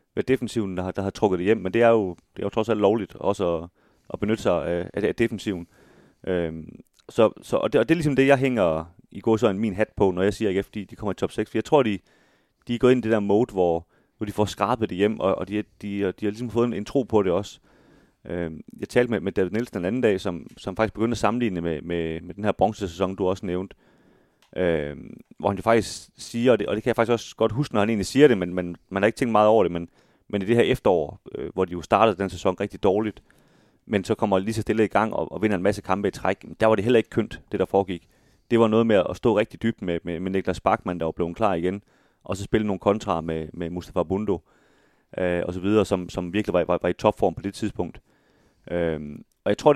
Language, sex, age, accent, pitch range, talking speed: Danish, male, 30-49, native, 90-115 Hz, 270 wpm